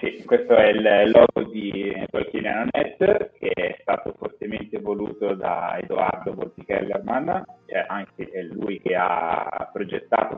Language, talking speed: Italian, 120 wpm